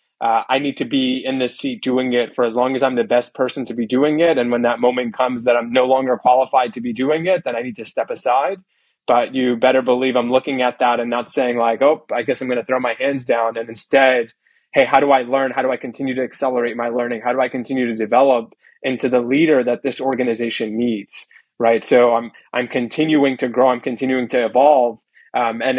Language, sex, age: English, male, 20-39